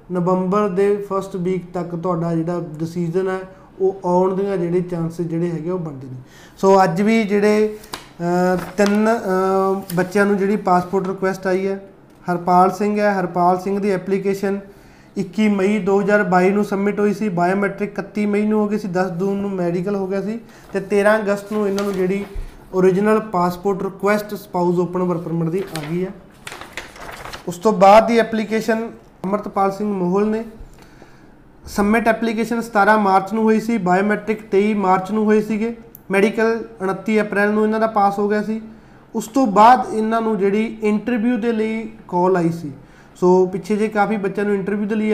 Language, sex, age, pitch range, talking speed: Punjabi, male, 20-39, 185-210 Hz, 170 wpm